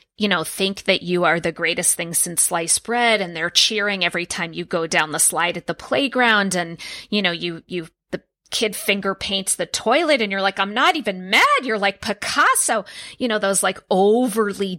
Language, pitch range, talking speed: English, 180-230 Hz, 205 wpm